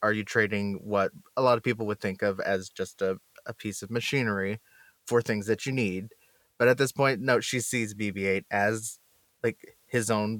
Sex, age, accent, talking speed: male, 20-39, American, 200 wpm